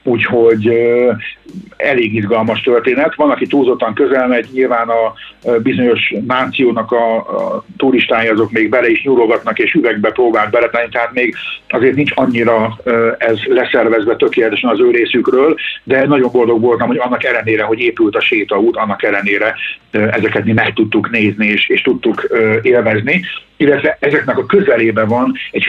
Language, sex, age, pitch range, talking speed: Hungarian, male, 50-69, 110-150 Hz, 160 wpm